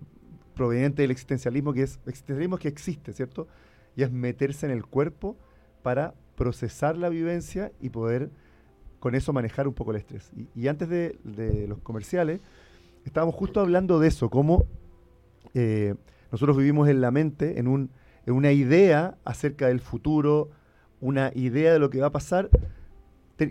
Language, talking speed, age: Spanish, 165 wpm, 40-59